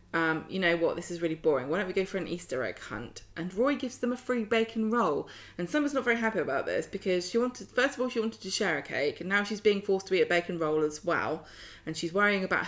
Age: 20-39